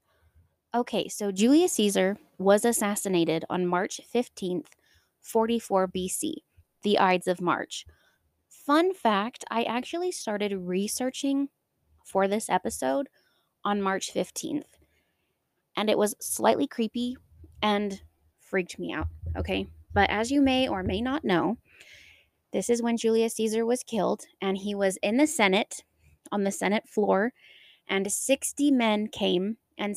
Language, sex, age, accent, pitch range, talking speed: English, female, 20-39, American, 185-245 Hz, 135 wpm